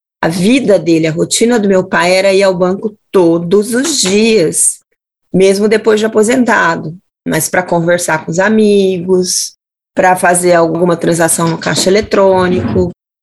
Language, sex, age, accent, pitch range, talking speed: Portuguese, female, 20-39, Brazilian, 175-205 Hz, 145 wpm